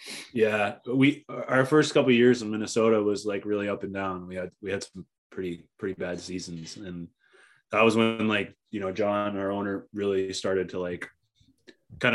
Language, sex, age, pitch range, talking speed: English, male, 20-39, 90-105 Hz, 195 wpm